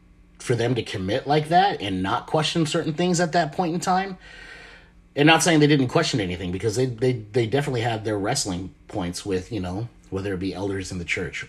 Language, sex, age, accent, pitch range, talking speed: English, male, 30-49, American, 90-110 Hz, 220 wpm